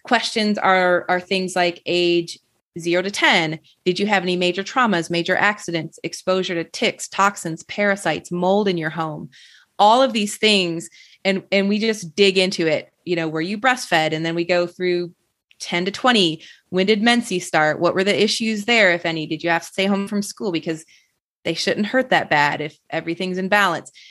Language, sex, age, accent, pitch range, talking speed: English, female, 30-49, American, 165-200 Hz, 195 wpm